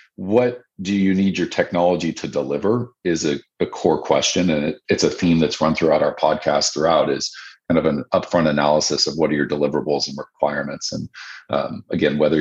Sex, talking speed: male, 195 wpm